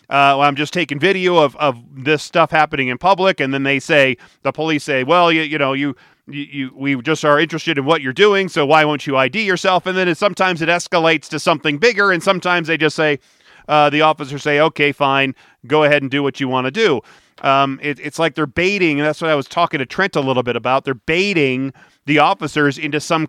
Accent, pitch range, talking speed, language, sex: American, 140-170 Hz, 240 wpm, English, male